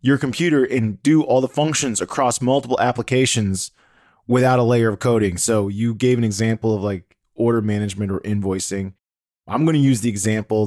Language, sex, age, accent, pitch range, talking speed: English, male, 20-39, American, 105-135 Hz, 180 wpm